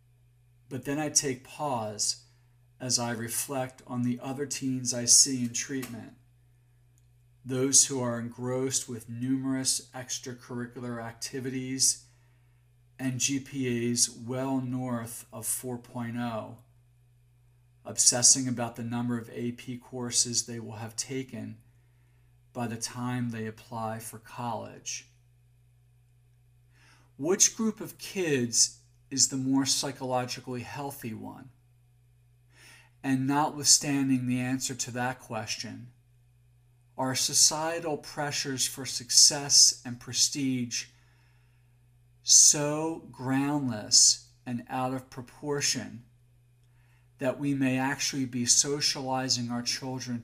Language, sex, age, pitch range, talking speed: English, male, 50-69, 120-130 Hz, 105 wpm